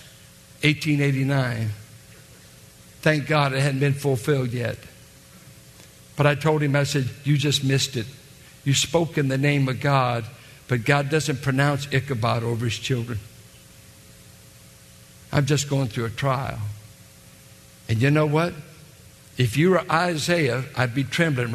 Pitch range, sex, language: 130-190 Hz, male, English